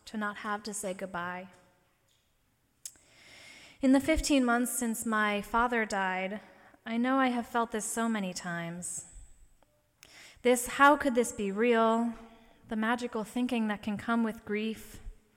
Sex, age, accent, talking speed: female, 20-39, American, 145 wpm